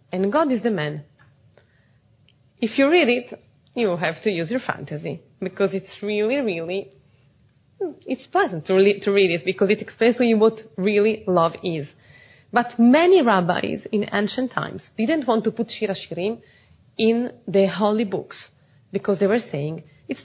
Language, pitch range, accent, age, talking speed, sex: English, 165-225 Hz, Italian, 30-49, 155 wpm, female